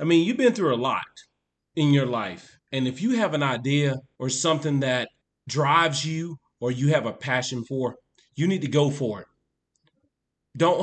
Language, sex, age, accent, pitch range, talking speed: English, male, 30-49, American, 140-175 Hz, 190 wpm